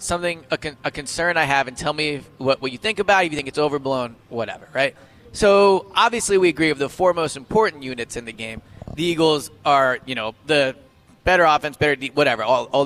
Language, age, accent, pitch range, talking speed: English, 20-39, American, 130-175 Hz, 230 wpm